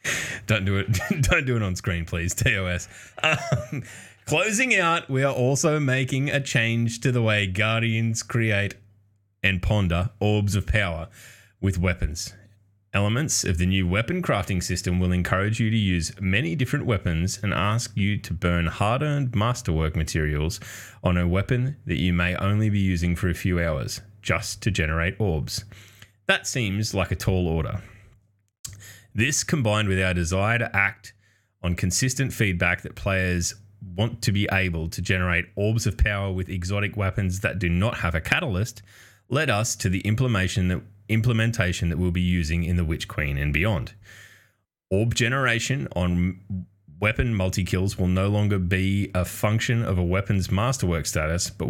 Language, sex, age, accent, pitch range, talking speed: English, male, 20-39, Australian, 90-115 Hz, 160 wpm